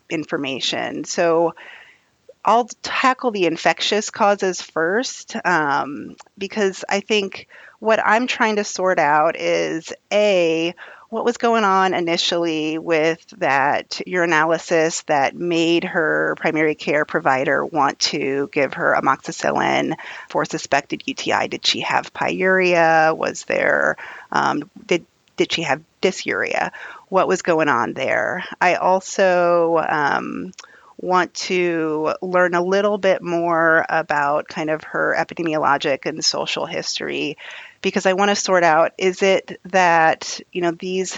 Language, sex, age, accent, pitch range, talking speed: English, female, 30-49, American, 160-190 Hz, 130 wpm